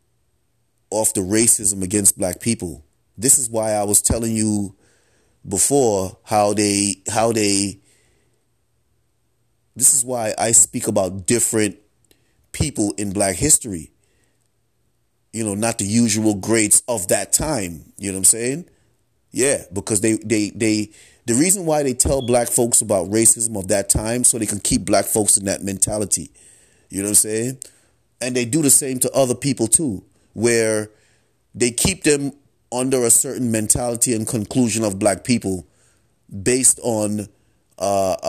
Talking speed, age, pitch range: 155 wpm, 30-49, 105-120 Hz